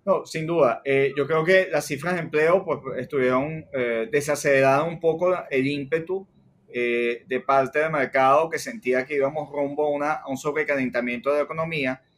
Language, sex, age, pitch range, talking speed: Spanish, male, 30-49, 130-165 Hz, 180 wpm